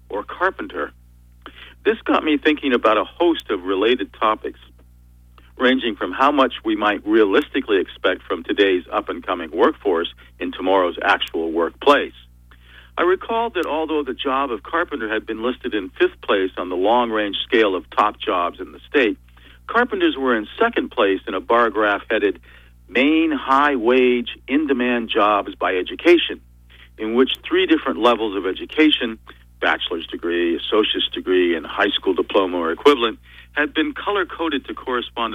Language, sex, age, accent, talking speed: English, male, 50-69, American, 155 wpm